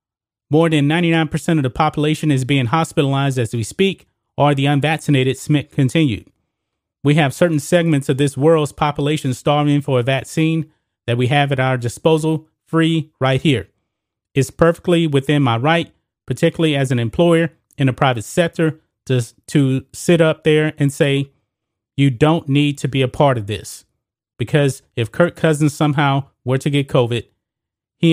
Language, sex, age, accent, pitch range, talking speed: English, male, 30-49, American, 125-155 Hz, 165 wpm